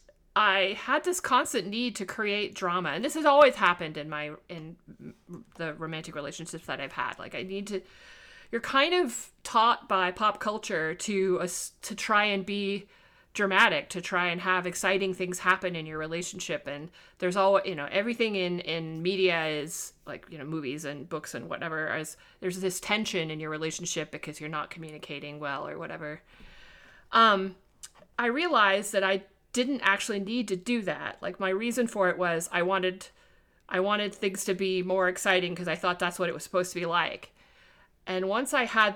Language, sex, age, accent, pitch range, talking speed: English, female, 30-49, American, 170-210 Hz, 190 wpm